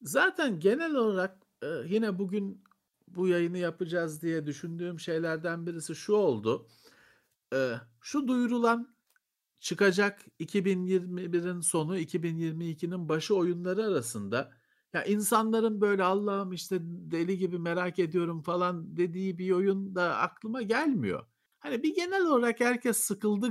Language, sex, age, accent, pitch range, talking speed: Turkish, male, 50-69, native, 170-235 Hz, 115 wpm